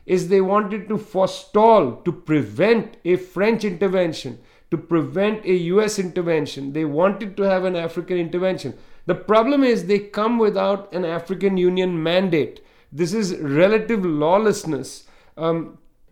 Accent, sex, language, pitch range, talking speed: Indian, male, English, 165-200 Hz, 140 wpm